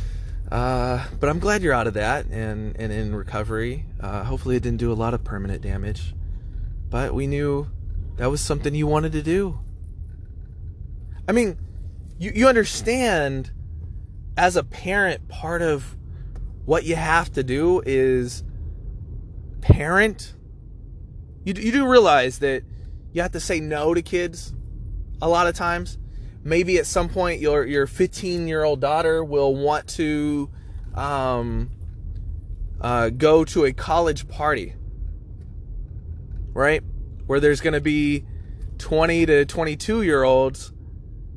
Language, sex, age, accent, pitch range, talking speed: English, male, 20-39, American, 90-150 Hz, 135 wpm